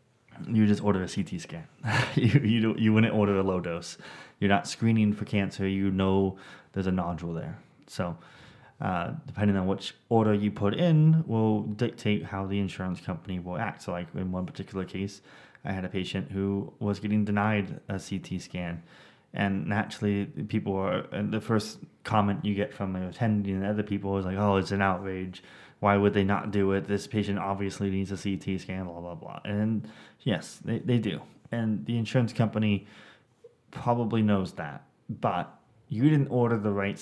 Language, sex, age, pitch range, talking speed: English, male, 20-39, 95-110 Hz, 185 wpm